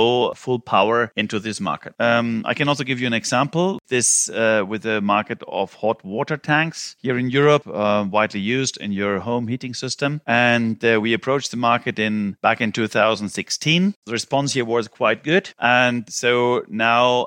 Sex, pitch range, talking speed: male, 105-125 Hz, 180 wpm